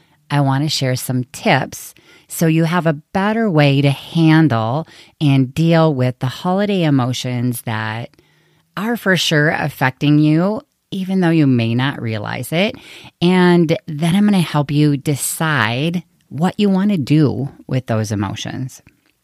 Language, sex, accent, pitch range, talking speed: English, female, American, 125-160 Hz, 155 wpm